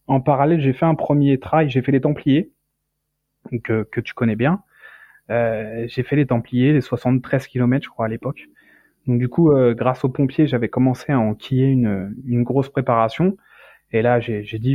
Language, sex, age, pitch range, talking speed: French, male, 20-39, 125-160 Hz, 200 wpm